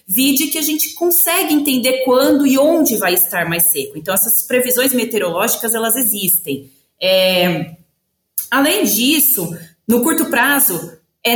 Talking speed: 130 wpm